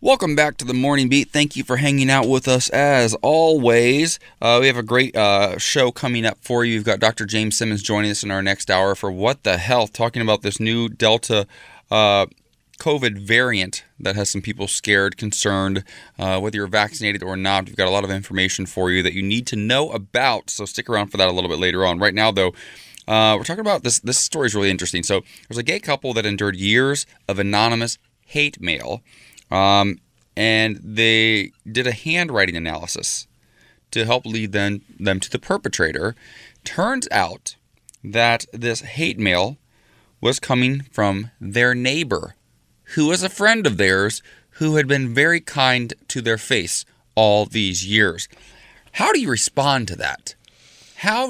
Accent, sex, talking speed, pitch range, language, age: American, male, 185 wpm, 100-130 Hz, English, 20-39